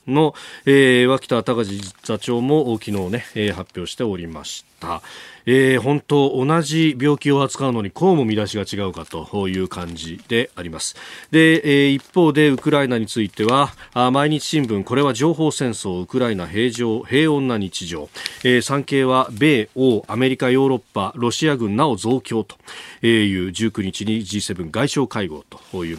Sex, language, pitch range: male, Japanese, 105-145 Hz